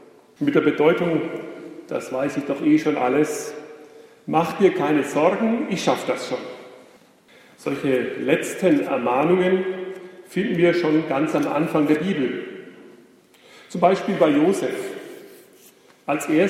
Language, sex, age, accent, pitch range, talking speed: German, male, 40-59, German, 150-215 Hz, 125 wpm